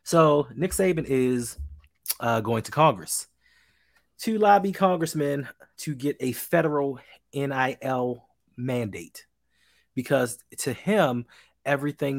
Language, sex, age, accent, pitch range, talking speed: English, male, 30-49, American, 115-155 Hz, 105 wpm